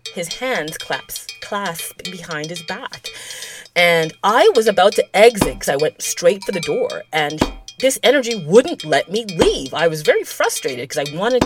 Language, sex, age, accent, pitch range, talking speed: English, female, 30-49, American, 155-255 Hz, 175 wpm